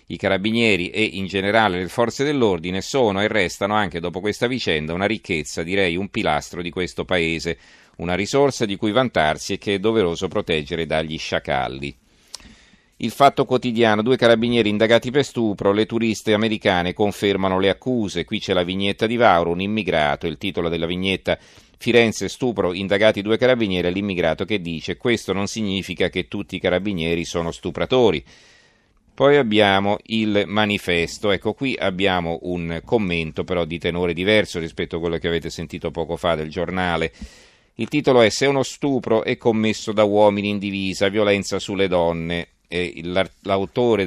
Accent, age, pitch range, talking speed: native, 40-59, 90-110 Hz, 160 wpm